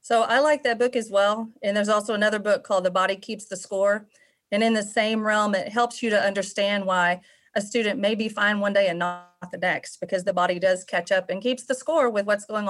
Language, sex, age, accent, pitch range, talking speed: English, female, 40-59, American, 195-230 Hz, 250 wpm